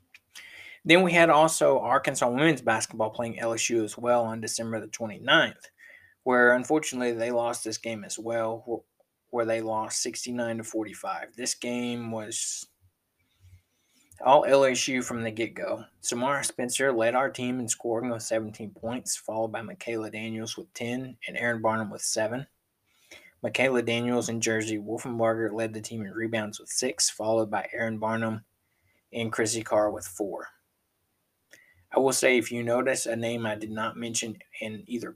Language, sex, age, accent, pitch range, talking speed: English, male, 20-39, American, 110-120 Hz, 160 wpm